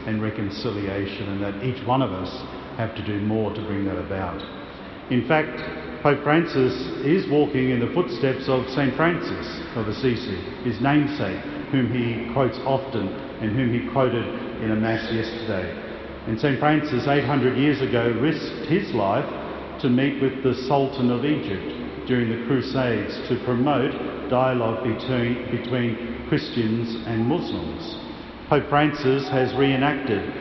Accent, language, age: Australian, English, 50-69